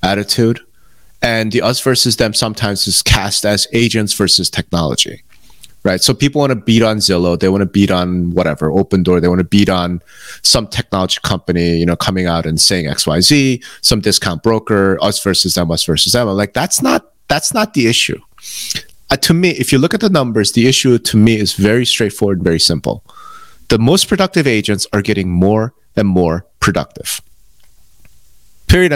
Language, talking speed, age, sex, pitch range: English, 185 wpm, 30-49, male, 95-120 Hz